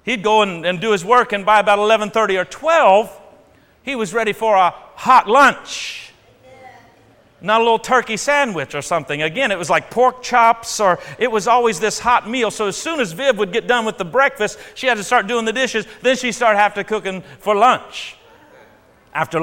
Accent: American